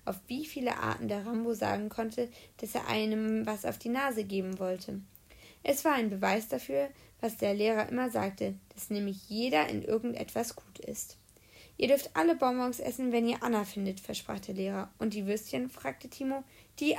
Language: German